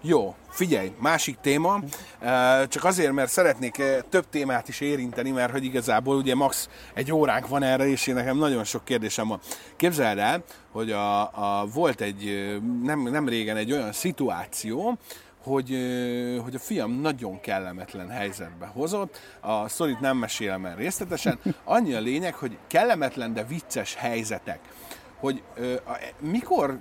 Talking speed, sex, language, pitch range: 150 wpm, male, Hungarian, 110-140 Hz